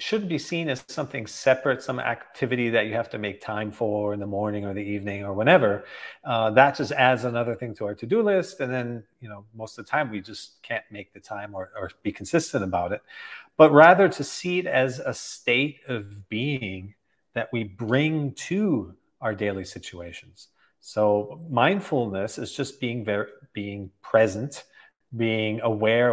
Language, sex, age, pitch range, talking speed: English, male, 40-59, 105-135 Hz, 185 wpm